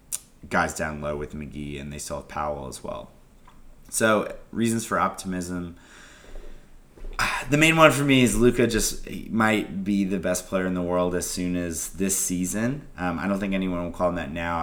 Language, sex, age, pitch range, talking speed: English, male, 30-49, 85-100 Hz, 195 wpm